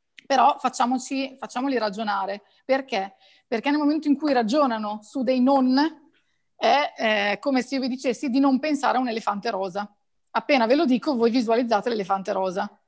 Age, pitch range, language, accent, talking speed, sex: 30-49, 210-265 Hz, Italian, native, 165 wpm, female